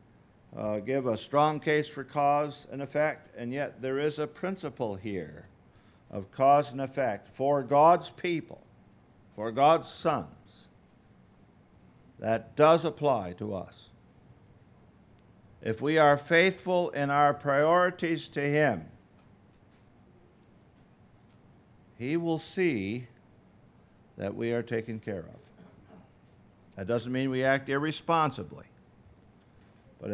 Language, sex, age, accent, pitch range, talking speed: English, male, 50-69, American, 110-150 Hz, 110 wpm